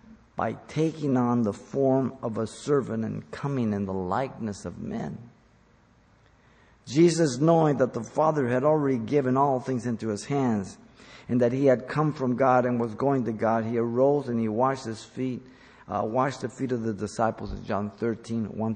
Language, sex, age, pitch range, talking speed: English, male, 50-69, 110-130 Hz, 185 wpm